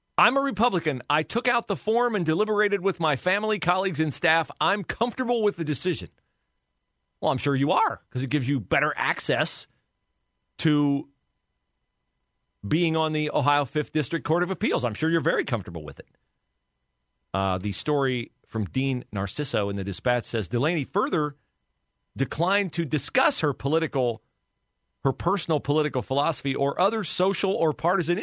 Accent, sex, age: American, male, 40-59